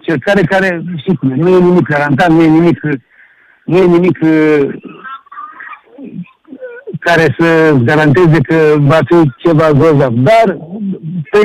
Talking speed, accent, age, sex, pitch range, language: 120 wpm, Indian, 60-79, male, 155-200 Hz, Romanian